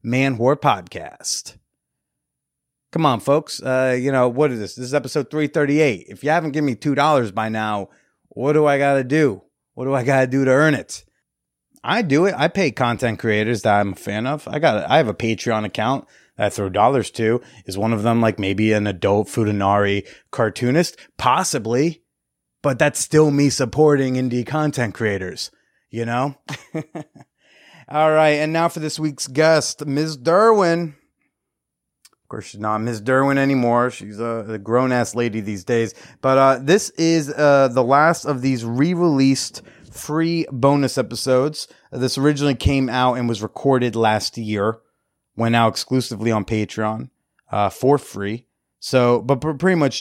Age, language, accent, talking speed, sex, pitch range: 30-49, English, American, 170 wpm, male, 115-150 Hz